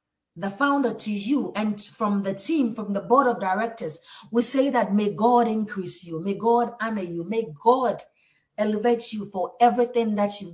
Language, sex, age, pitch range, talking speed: English, female, 40-59, 205-250 Hz, 180 wpm